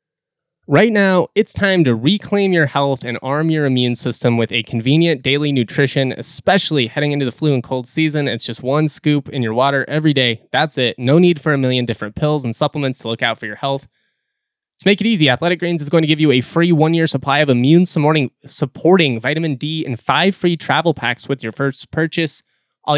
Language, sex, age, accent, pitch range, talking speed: English, male, 20-39, American, 120-155 Hz, 215 wpm